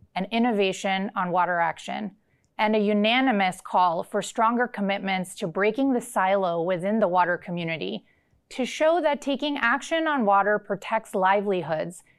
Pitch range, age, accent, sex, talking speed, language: 190-235 Hz, 30-49, American, female, 145 wpm, English